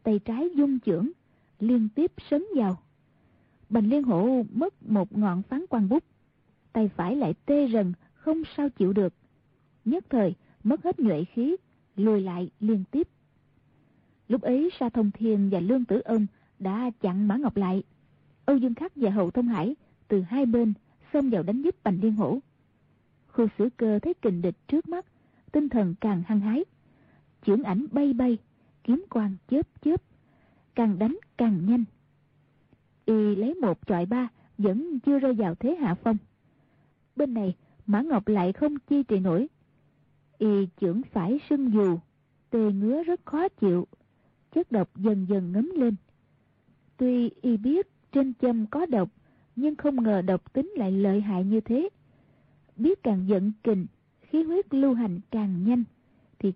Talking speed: 165 wpm